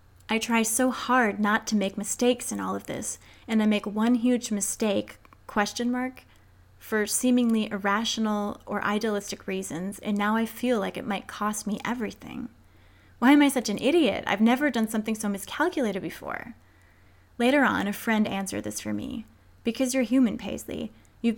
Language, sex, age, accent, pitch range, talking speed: English, female, 20-39, American, 195-230 Hz, 175 wpm